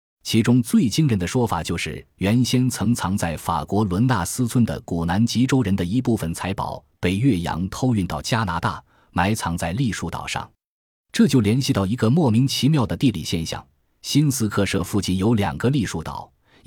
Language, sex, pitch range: Chinese, male, 85-115 Hz